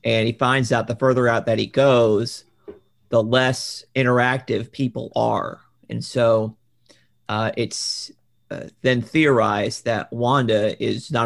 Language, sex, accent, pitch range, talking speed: English, male, American, 110-125 Hz, 140 wpm